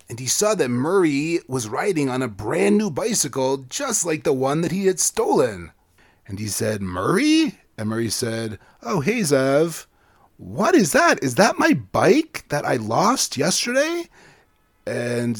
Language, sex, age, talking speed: English, male, 30-49, 165 wpm